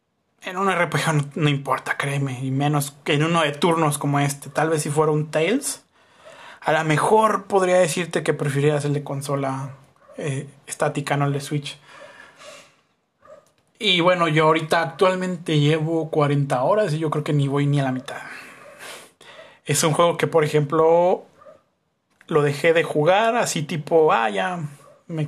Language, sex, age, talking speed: Spanish, male, 30-49, 170 wpm